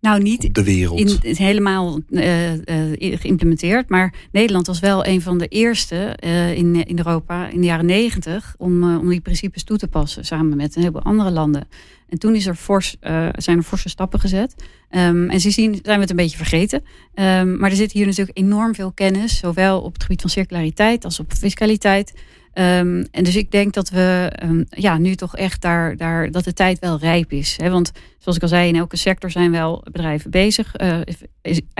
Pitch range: 170-195 Hz